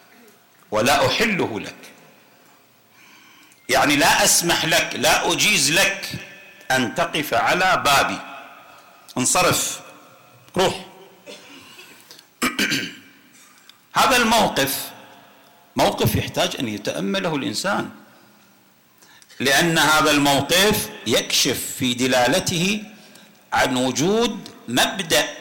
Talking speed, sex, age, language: 75 wpm, male, 50-69, Arabic